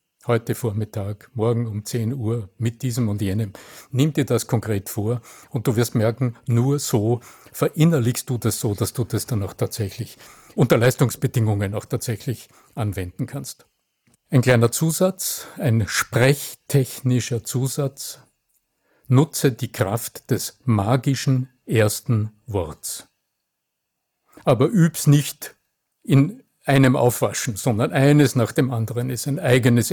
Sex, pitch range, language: male, 115-145 Hz, German